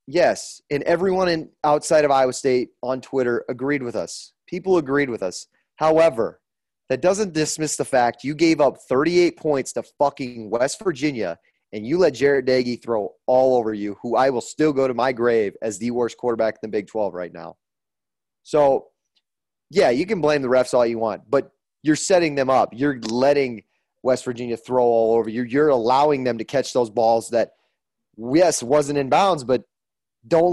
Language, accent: English, American